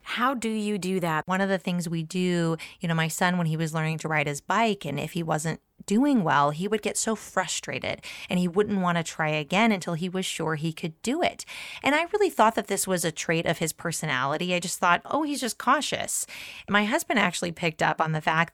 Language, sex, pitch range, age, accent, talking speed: English, female, 160-210 Hz, 30-49, American, 245 wpm